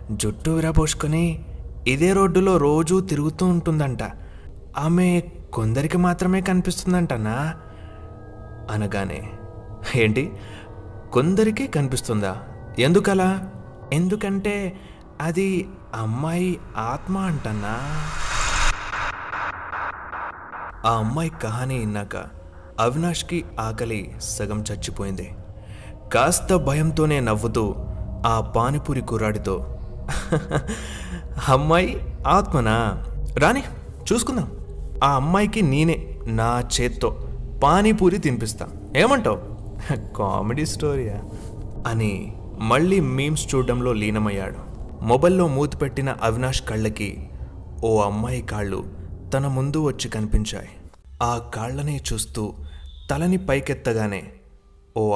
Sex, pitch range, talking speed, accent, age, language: male, 105-155 Hz, 75 wpm, native, 20-39, Telugu